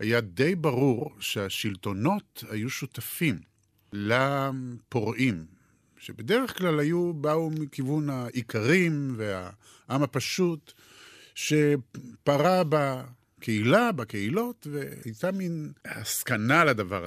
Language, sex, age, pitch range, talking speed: Hebrew, male, 50-69, 110-150 Hz, 75 wpm